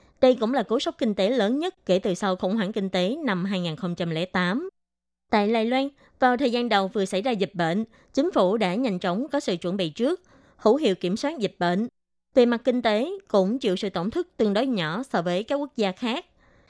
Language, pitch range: Vietnamese, 185-245 Hz